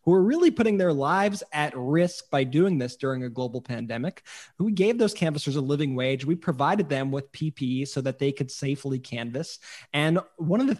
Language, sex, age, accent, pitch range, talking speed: English, male, 20-39, American, 135-165 Hz, 205 wpm